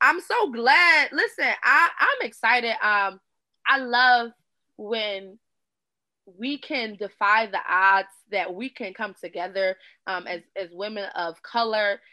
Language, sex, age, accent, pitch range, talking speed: English, female, 20-39, American, 210-270 Hz, 135 wpm